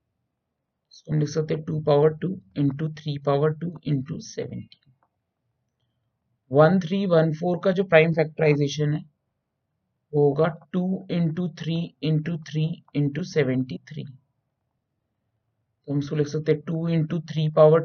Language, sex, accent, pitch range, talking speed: Hindi, male, native, 135-180 Hz, 120 wpm